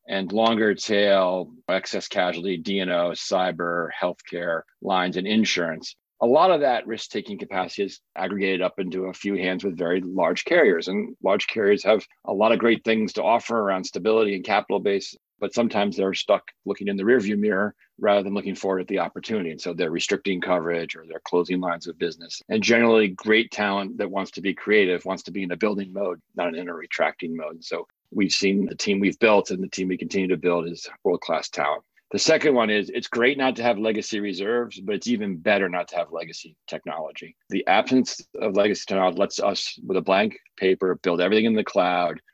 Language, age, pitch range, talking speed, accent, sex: English, 40-59, 90-110 Hz, 205 wpm, American, male